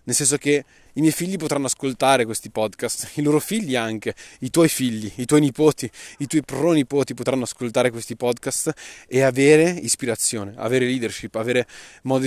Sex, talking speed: male, 165 wpm